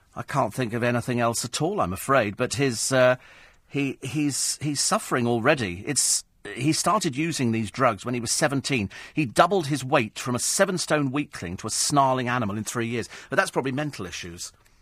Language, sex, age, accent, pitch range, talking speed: English, male, 40-59, British, 115-155 Hz, 180 wpm